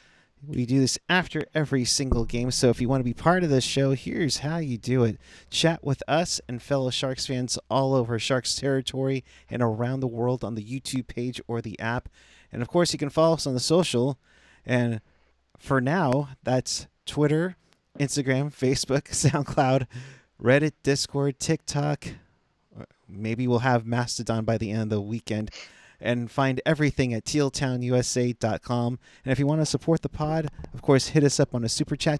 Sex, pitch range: male, 120-145 Hz